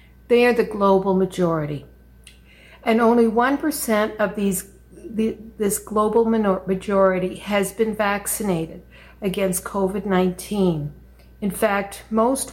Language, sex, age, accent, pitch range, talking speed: English, female, 60-79, American, 180-225 Hz, 110 wpm